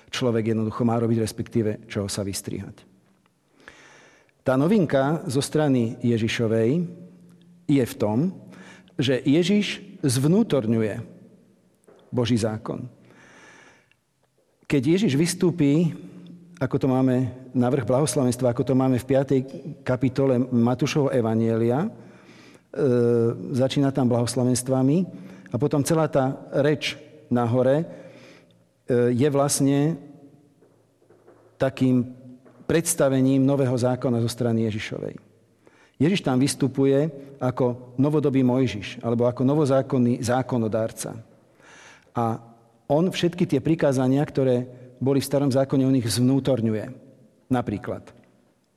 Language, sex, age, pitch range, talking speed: Slovak, male, 50-69, 120-145 Hz, 100 wpm